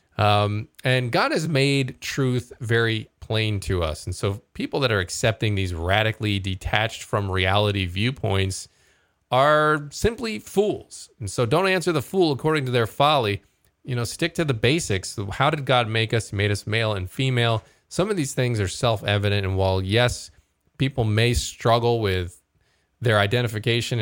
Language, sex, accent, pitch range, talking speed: English, male, American, 100-125 Hz, 165 wpm